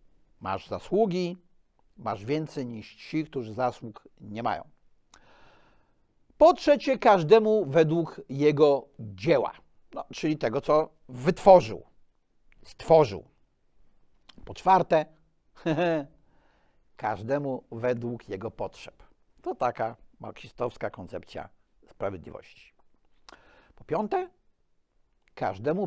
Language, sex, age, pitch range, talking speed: Polish, male, 60-79, 140-205 Hz, 85 wpm